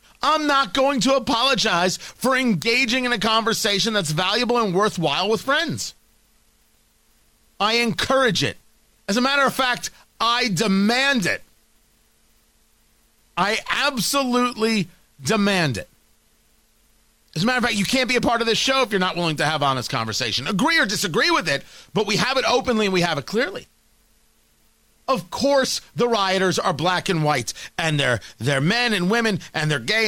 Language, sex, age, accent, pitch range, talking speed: English, male, 40-59, American, 150-230 Hz, 170 wpm